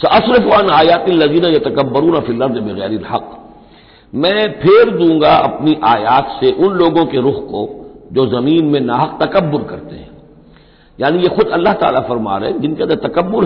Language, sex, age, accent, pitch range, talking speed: Hindi, male, 50-69, native, 150-215 Hz, 175 wpm